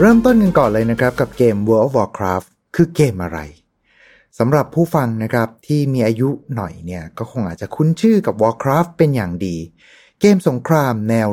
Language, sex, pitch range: Thai, male, 110-160 Hz